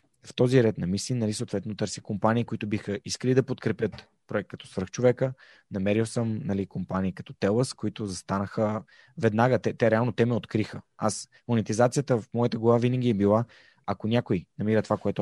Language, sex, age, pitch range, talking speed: Bulgarian, male, 20-39, 100-120 Hz, 180 wpm